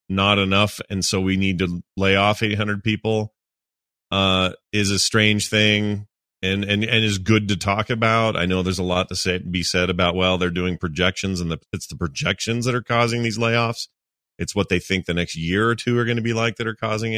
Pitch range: 90-110 Hz